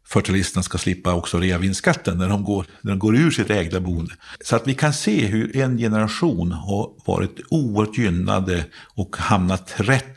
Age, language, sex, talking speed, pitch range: 50-69, Swedish, male, 175 wpm, 90-110 Hz